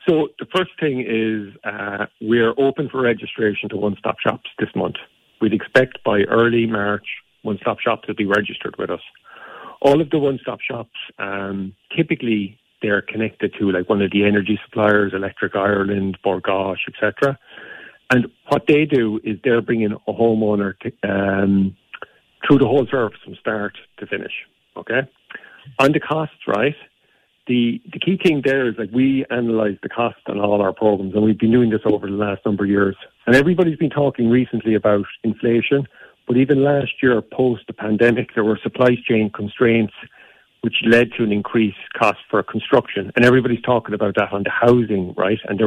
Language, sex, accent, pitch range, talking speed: English, male, Irish, 105-125 Hz, 180 wpm